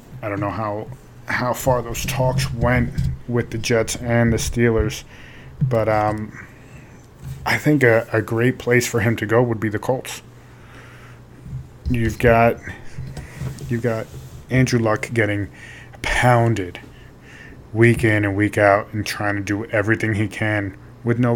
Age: 20-39